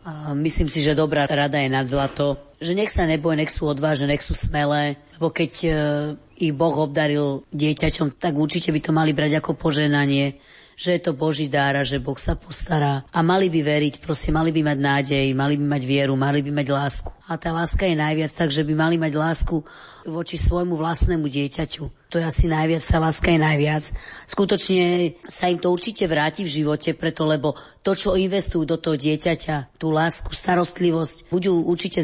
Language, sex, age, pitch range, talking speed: Slovak, female, 30-49, 150-165 Hz, 195 wpm